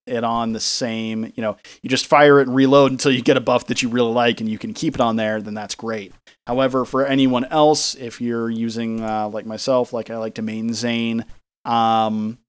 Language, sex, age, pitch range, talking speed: English, male, 30-49, 115-130 Hz, 230 wpm